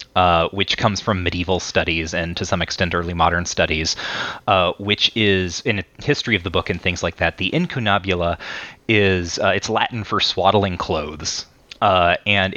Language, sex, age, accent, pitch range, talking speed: English, male, 30-49, American, 90-110 Hz, 170 wpm